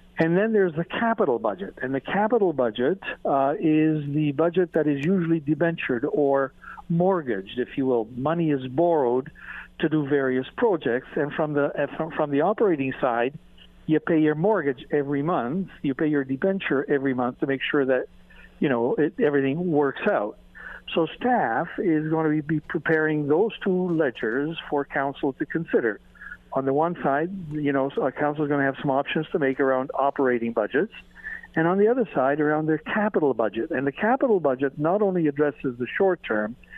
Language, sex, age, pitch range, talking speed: English, male, 60-79, 140-170 Hz, 185 wpm